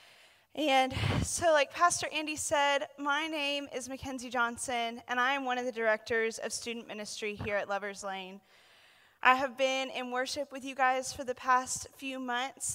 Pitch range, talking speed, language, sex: 230-275 Hz, 180 wpm, English, female